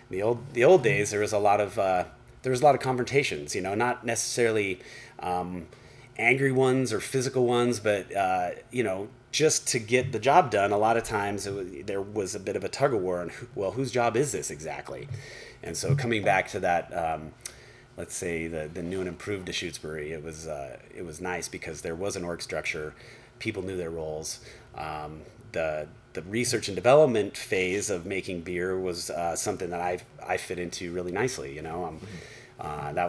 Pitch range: 85-120 Hz